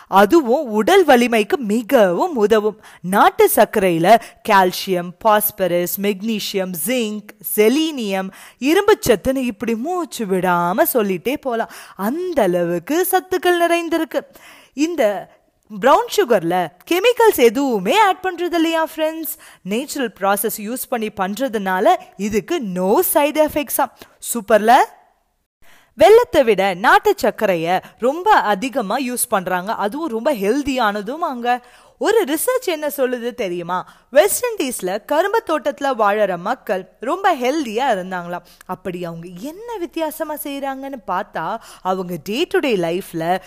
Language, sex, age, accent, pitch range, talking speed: Tamil, female, 20-39, native, 200-320 Hz, 95 wpm